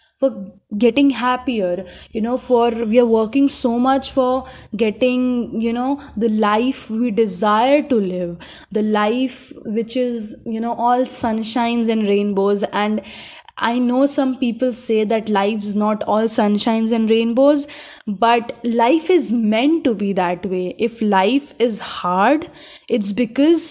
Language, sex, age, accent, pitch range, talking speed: English, female, 10-29, Indian, 210-265 Hz, 145 wpm